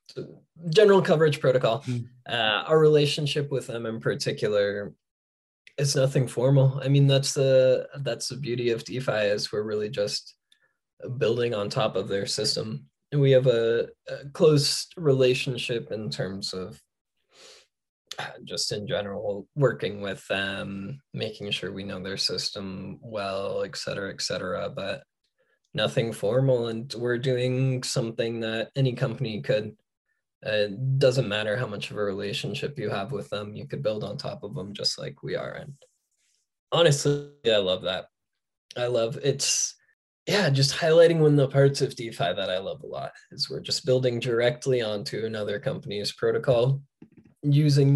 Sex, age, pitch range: male, 20-39, 105-140 Hz